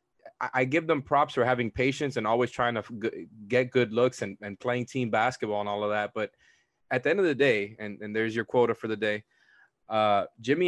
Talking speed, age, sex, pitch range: 225 wpm, 20-39, male, 105-125 Hz